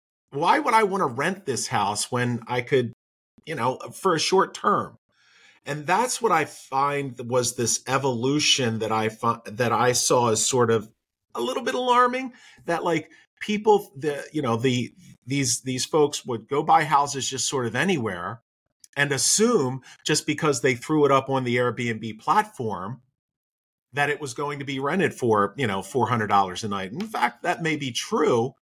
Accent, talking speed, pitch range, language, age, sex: American, 185 wpm, 115-145 Hz, English, 40-59, male